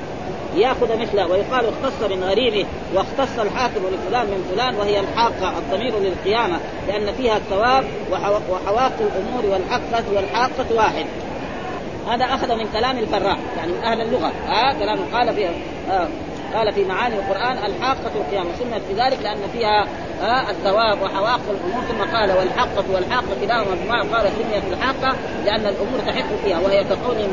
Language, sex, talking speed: Arabic, female, 145 wpm